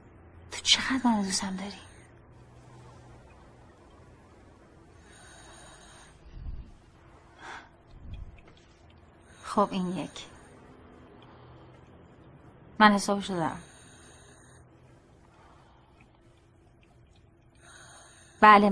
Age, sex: 30-49, female